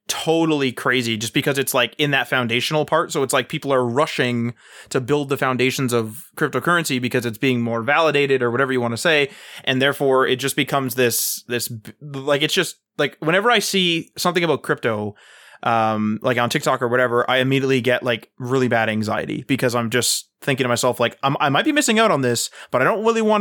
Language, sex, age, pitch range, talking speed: English, male, 20-39, 125-175 Hz, 210 wpm